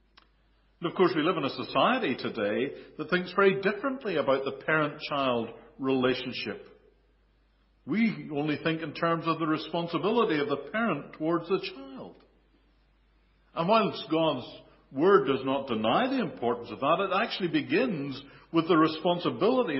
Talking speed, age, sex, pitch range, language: 145 wpm, 60-79, male, 130-190 Hz, English